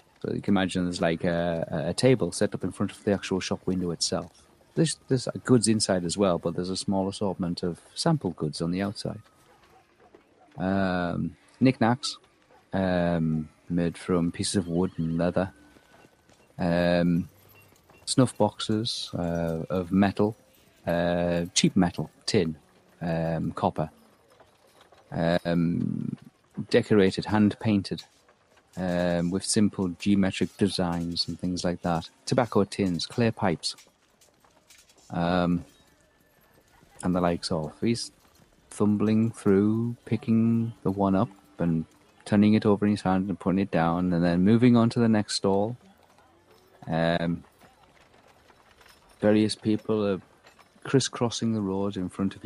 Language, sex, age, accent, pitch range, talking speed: English, male, 40-59, British, 85-105 Hz, 130 wpm